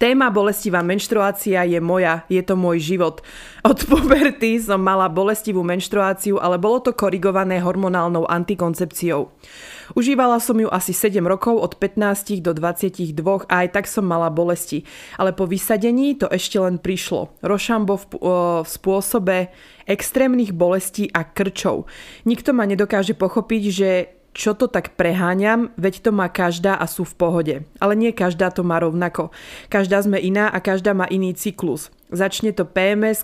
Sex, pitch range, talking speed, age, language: female, 175-205 Hz, 155 wpm, 20-39, Slovak